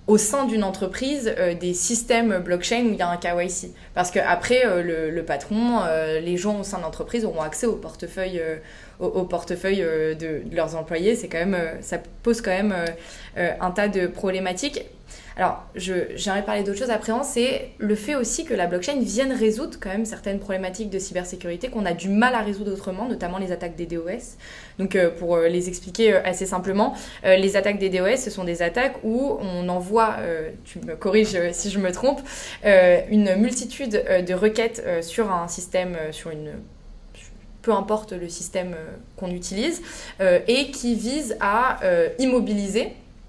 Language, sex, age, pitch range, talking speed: French, female, 20-39, 180-225 Hz, 200 wpm